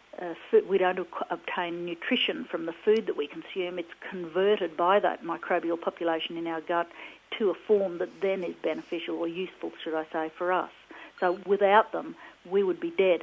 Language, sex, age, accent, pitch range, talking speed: English, female, 50-69, Australian, 170-200 Hz, 185 wpm